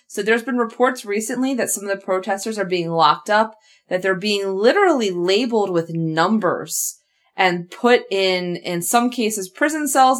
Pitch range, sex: 190-255 Hz, female